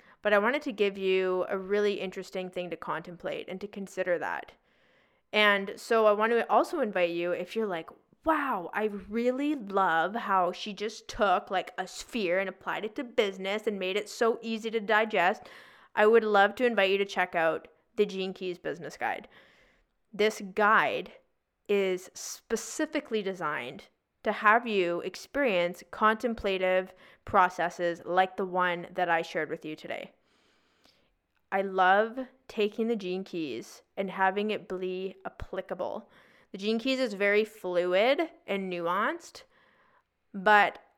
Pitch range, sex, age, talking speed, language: 185-220 Hz, female, 20-39, 150 wpm, English